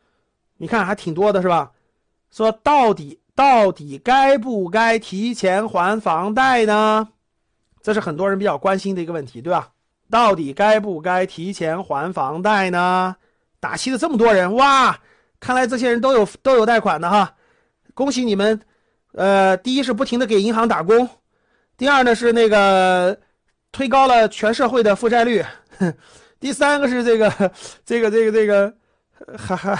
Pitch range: 185-245 Hz